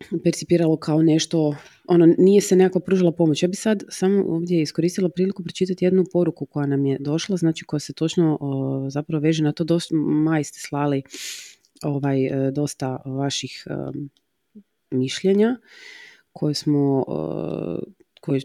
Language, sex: Croatian, female